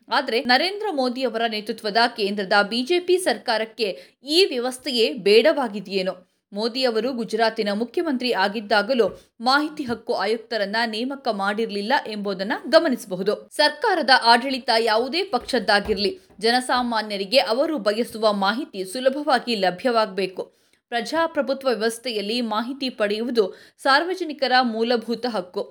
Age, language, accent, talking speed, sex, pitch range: 20-39, Kannada, native, 95 wpm, female, 220-285 Hz